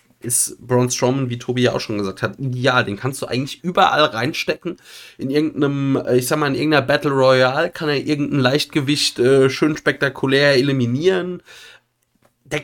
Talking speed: 165 wpm